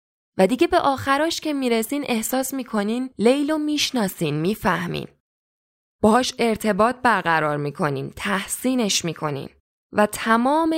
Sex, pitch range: female, 180-250 Hz